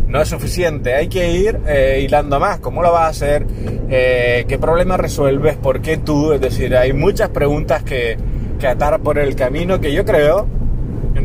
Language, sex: Spanish, male